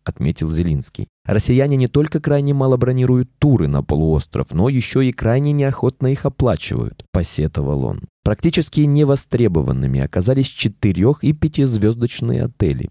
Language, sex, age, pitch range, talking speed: Russian, male, 20-39, 90-130 Hz, 125 wpm